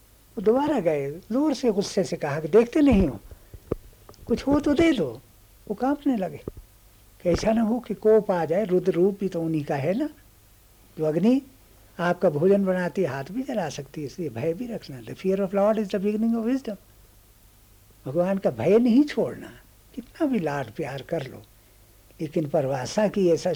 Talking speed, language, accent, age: 185 wpm, Hindi, native, 60-79